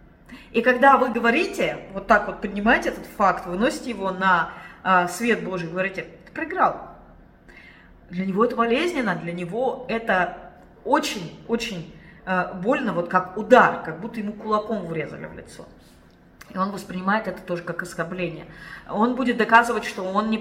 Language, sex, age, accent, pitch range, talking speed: Russian, female, 30-49, native, 190-235 Hz, 145 wpm